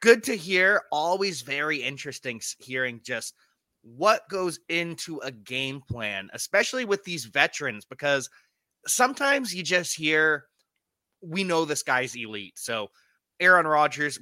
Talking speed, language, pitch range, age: 130 wpm, English, 115-150 Hz, 30-49